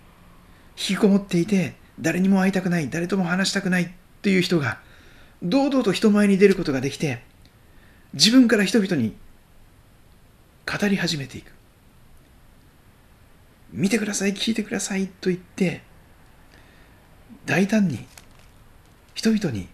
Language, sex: Japanese, male